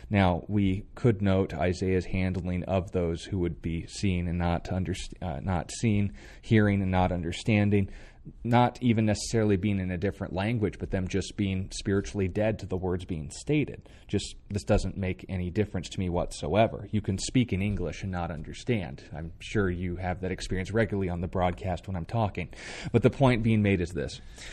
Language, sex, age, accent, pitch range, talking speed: English, male, 30-49, American, 90-115 Hz, 190 wpm